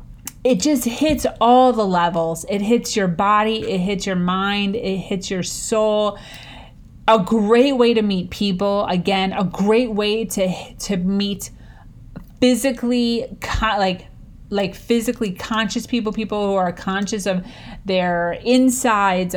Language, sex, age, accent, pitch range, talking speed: English, female, 30-49, American, 185-220 Hz, 135 wpm